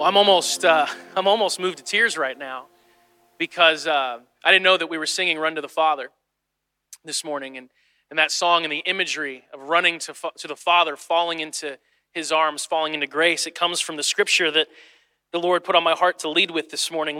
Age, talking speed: 30-49, 225 wpm